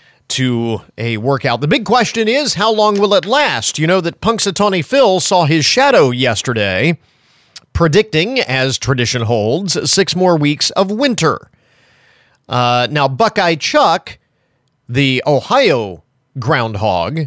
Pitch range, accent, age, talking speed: 125-175 Hz, American, 40-59, 130 wpm